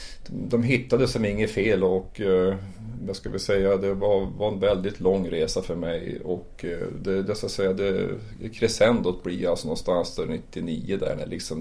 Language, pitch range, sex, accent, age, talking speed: Swedish, 95-110 Hz, male, native, 30-49, 185 wpm